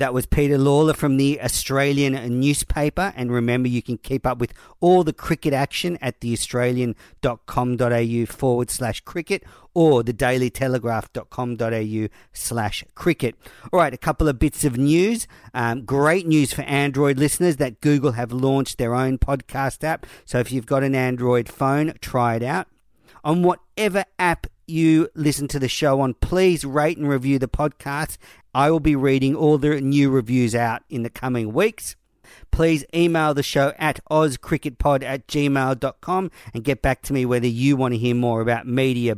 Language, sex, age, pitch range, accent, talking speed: English, male, 50-69, 125-150 Hz, Australian, 165 wpm